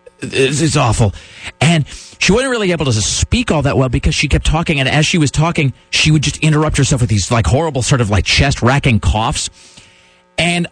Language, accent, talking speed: English, American, 205 wpm